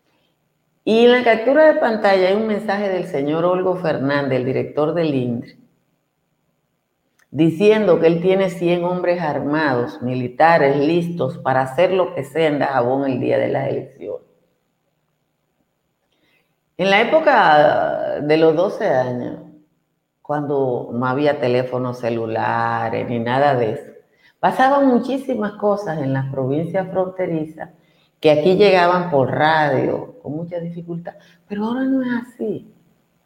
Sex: female